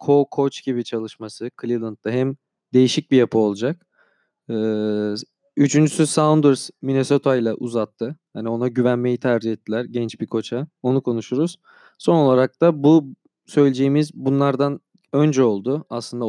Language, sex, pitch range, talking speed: English, male, 125-150 Hz, 120 wpm